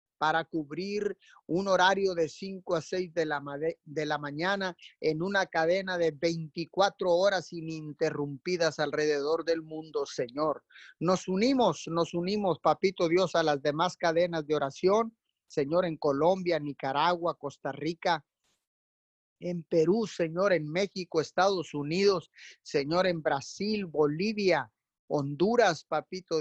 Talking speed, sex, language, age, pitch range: 125 wpm, male, Spanish, 30-49, 155-190 Hz